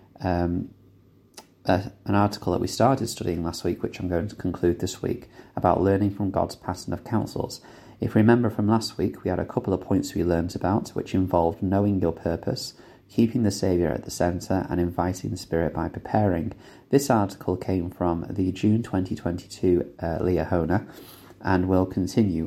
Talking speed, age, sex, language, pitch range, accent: 180 wpm, 30-49, male, English, 90-105 Hz, British